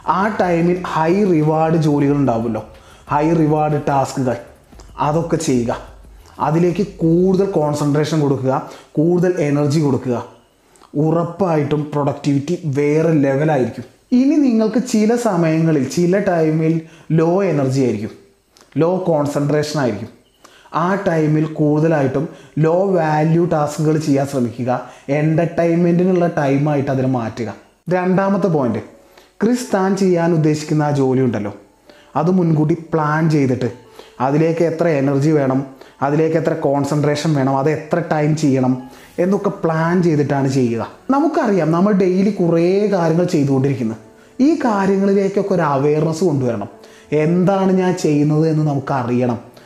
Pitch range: 135-175 Hz